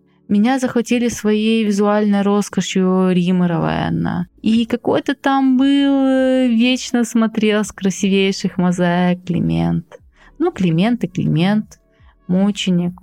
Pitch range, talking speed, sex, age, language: 180-220 Hz, 100 wpm, female, 20-39, Russian